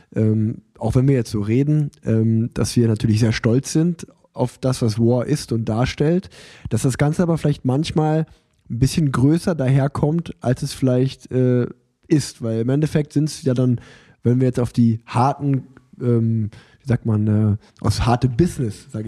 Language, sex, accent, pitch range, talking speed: German, male, German, 120-145 Hz, 180 wpm